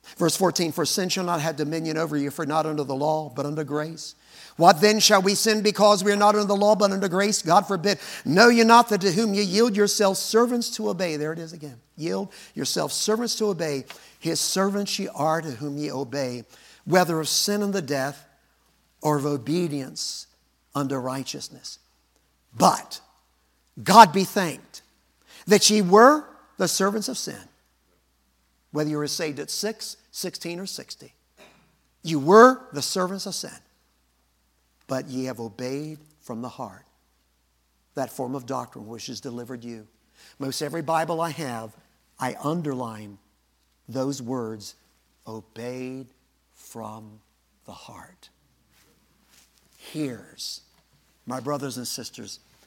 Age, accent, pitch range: 50-69, American, 120-190 Hz